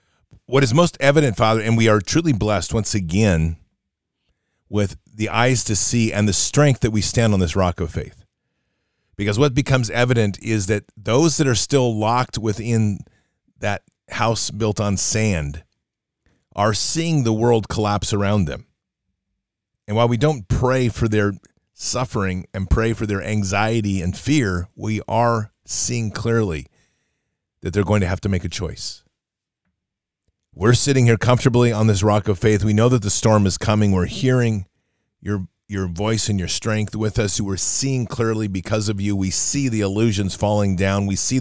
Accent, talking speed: American, 175 wpm